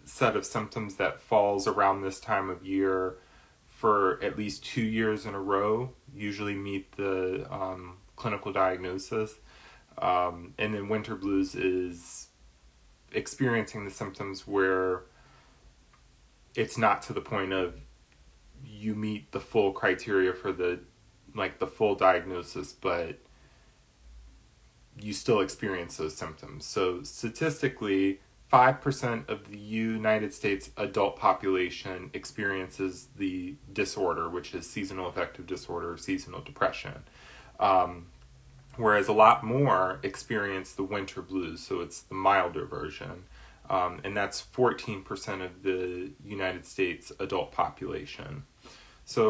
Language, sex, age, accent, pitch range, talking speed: English, male, 20-39, American, 90-110 Hz, 125 wpm